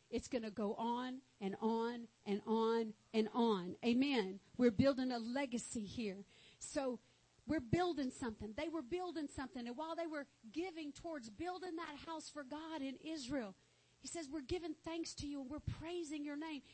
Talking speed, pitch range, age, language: 180 wpm, 220-320 Hz, 50-69, English